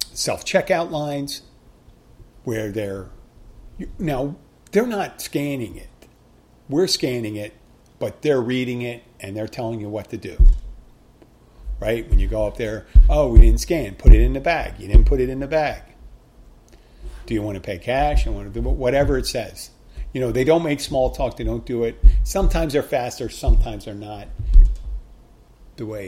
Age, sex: 50-69, male